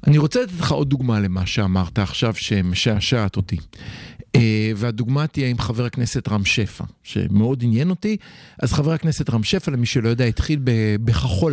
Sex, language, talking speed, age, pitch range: male, Hebrew, 155 wpm, 50-69, 115-170 Hz